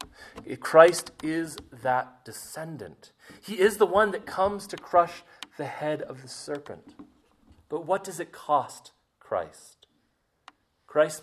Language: English